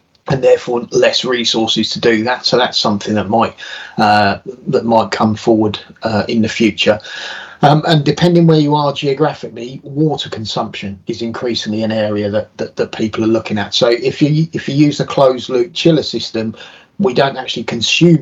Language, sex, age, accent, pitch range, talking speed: English, male, 30-49, British, 110-130 Hz, 185 wpm